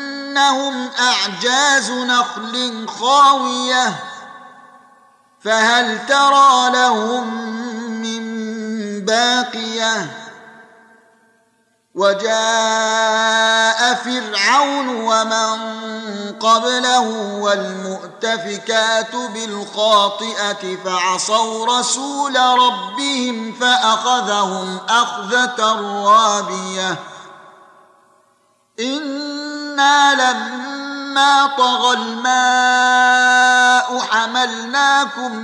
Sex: male